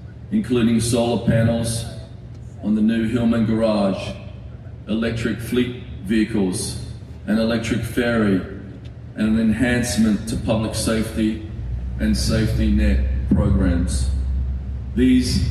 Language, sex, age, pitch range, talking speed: English, male, 40-59, 90-115 Hz, 95 wpm